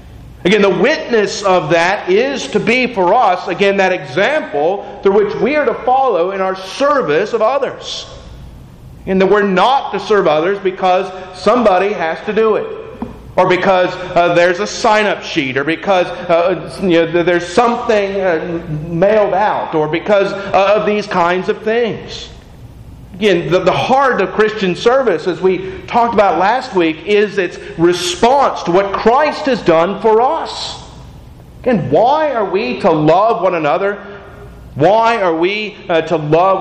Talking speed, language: 155 wpm, English